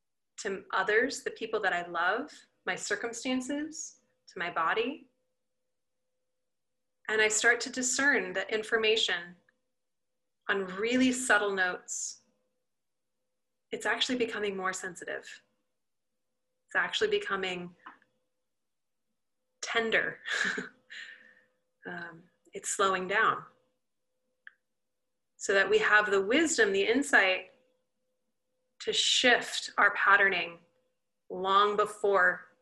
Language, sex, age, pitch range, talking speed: English, female, 30-49, 210-260 Hz, 90 wpm